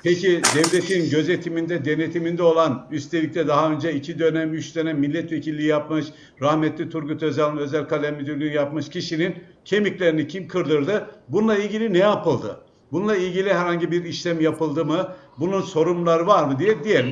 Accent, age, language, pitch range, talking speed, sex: native, 60-79, Turkish, 155-185 Hz, 150 wpm, male